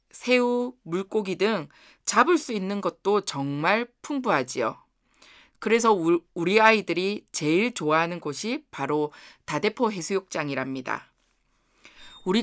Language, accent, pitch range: Korean, native, 175-245 Hz